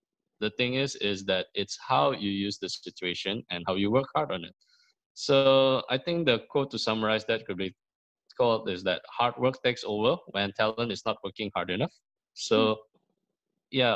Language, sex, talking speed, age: English, male, 190 wpm, 20-39